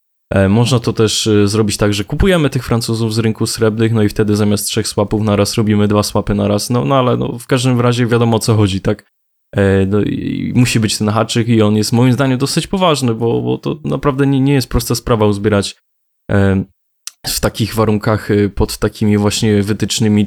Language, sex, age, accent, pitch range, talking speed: Polish, male, 20-39, native, 105-115 Hz, 200 wpm